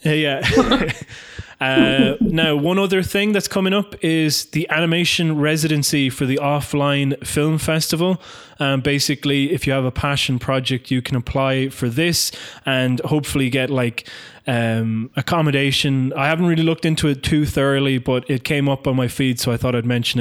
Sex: male